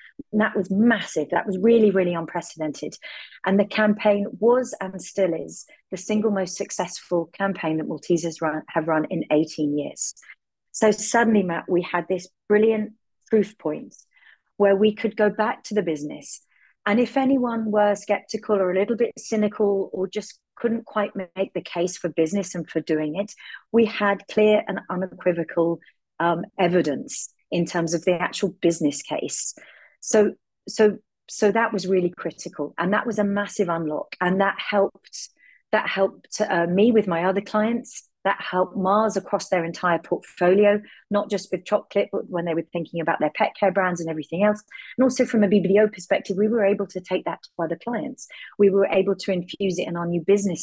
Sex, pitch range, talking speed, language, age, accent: female, 175-210 Hz, 185 wpm, English, 40-59, British